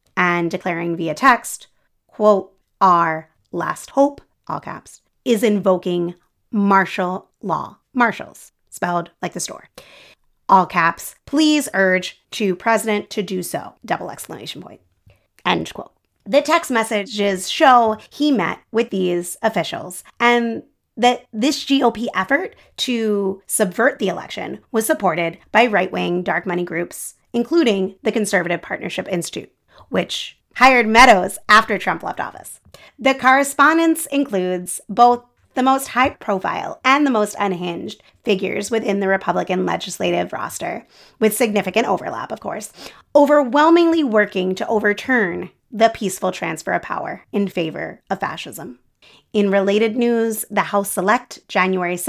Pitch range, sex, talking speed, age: 185-245 Hz, female, 130 wpm, 30-49